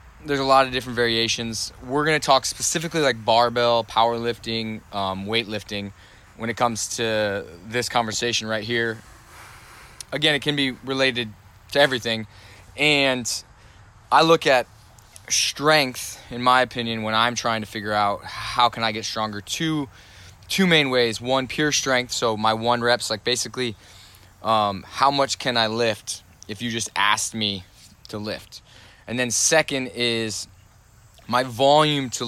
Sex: male